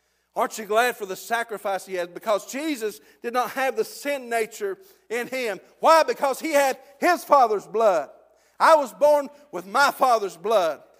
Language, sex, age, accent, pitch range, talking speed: English, male, 50-69, American, 230-290 Hz, 175 wpm